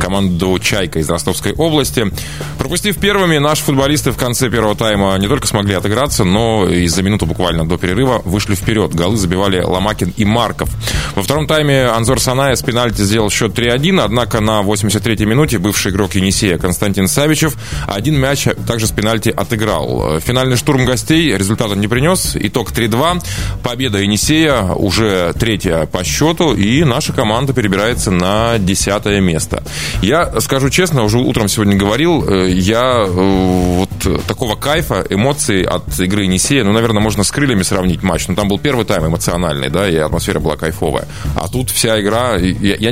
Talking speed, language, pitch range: 160 wpm, Russian, 90-120 Hz